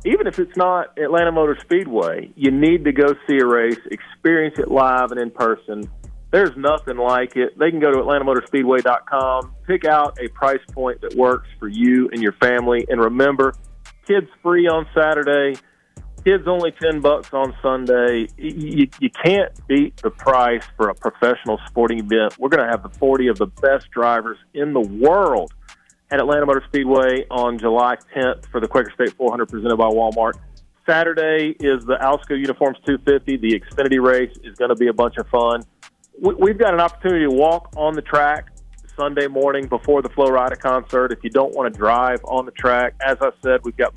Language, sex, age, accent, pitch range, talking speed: English, male, 40-59, American, 120-150 Hz, 190 wpm